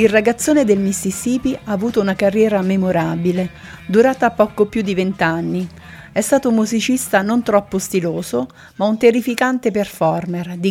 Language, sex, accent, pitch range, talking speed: Italian, female, native, 180-220 Hz, 145 wpm